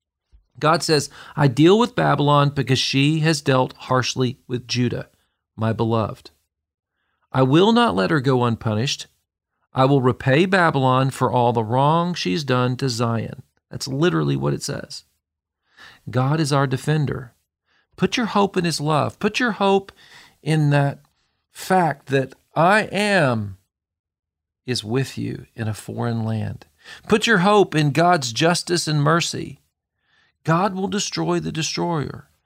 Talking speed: 145 wpm